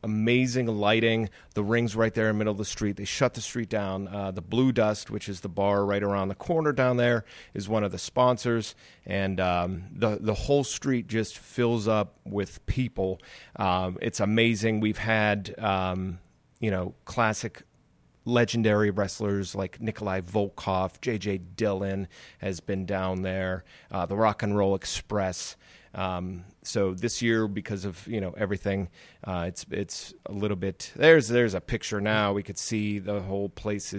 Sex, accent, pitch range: male, American, 95-115 Hz